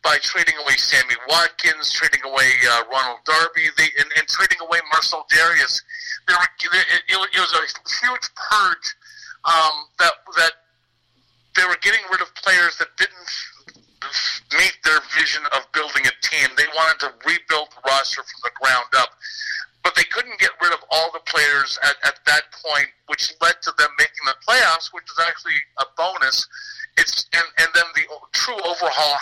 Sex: male